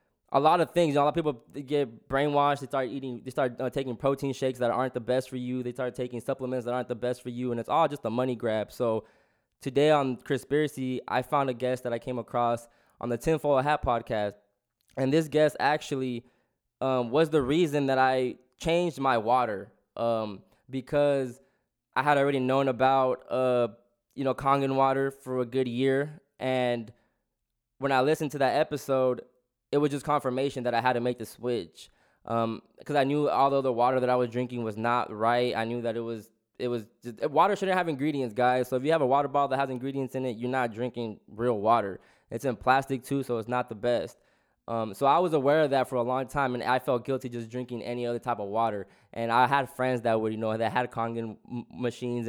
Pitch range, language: 120-140 Hz, English